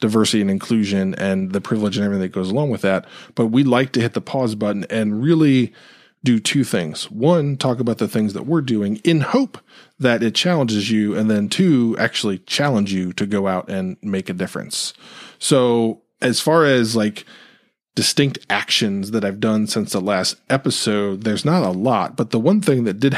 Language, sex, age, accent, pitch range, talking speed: English, male, 20-39, American, 100-125 Hz, 200 wpm